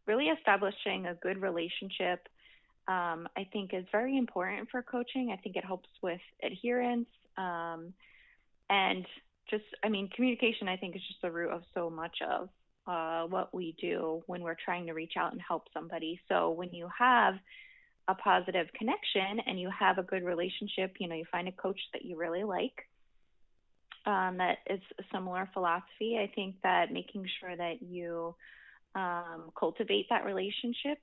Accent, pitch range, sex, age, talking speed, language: American, 175-210 Hz, female, 20-39, 170 wpm, English